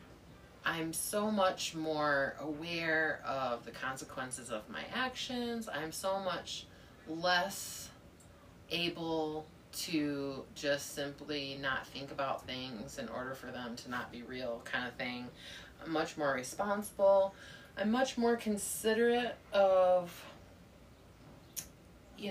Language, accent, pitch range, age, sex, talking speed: English, American, 140-210 Hz, 30-49, female, 120 wpm